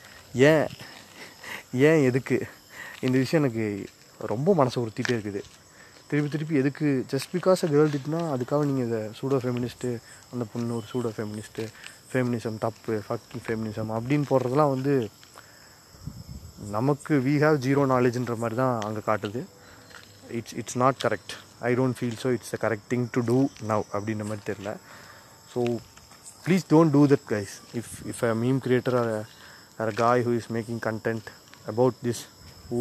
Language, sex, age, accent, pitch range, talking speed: Tamil, male, 20-39, native, 115-135 Hz, 150 wpm